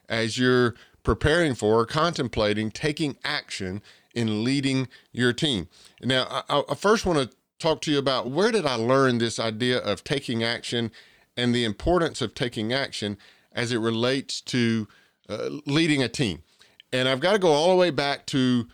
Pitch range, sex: 115-140 Hz, male